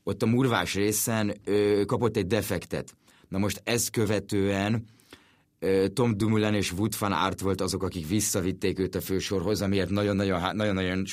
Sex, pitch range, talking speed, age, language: male, 90-105 Hz, 155 wpm, 30-49, Hungarian